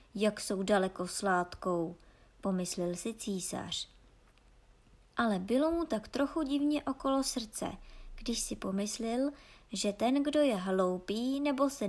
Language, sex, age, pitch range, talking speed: Czech, male, 20-39, 185-265 Hz, 130 wpm